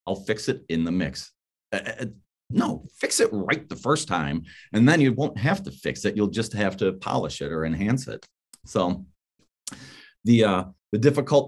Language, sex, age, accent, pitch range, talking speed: English, male, 40-59, American, 95-120 Hz, 195 wpm